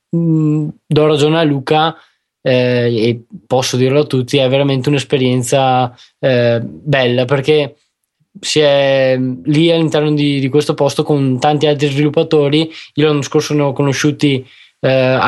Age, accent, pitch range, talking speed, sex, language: 20-39, native, 130-155 Hz, 135 wpm, male, Italian